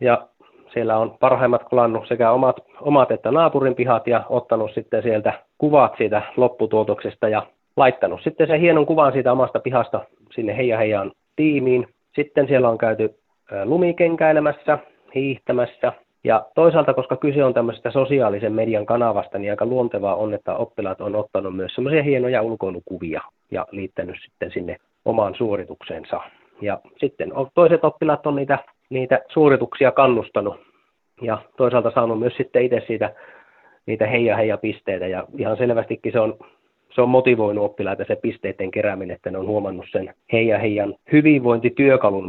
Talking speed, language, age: 140 wpm, Finnish, 30-49